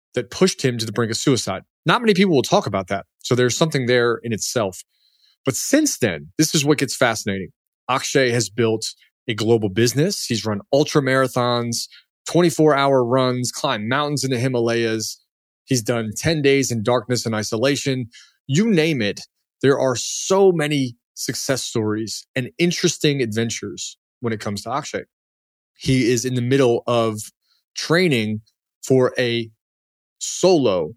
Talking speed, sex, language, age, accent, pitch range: 155 wpm, male, English, 30-49, American, 110-145 Hz